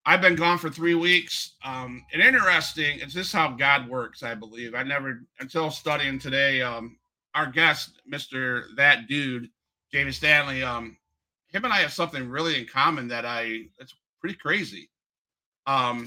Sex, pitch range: male, 115-140 Hz